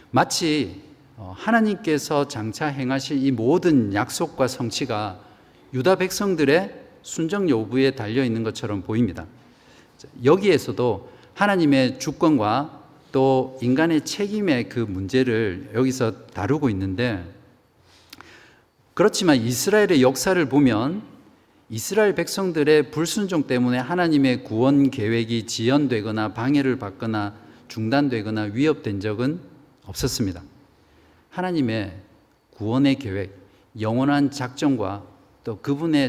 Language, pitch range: Korean, 110-145 Hz